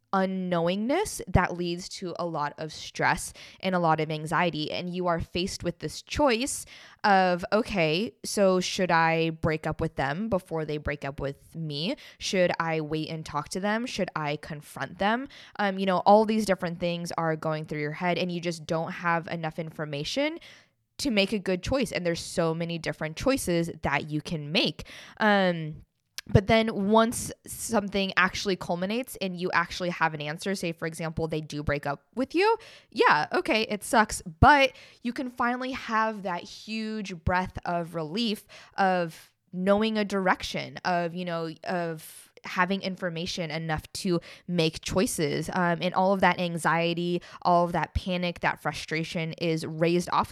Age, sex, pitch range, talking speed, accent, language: 20-39, female, 165-205 Hz, 175 wpm, American, English